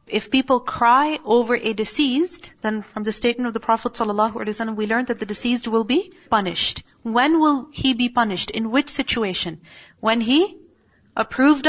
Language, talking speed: English, 170 wpm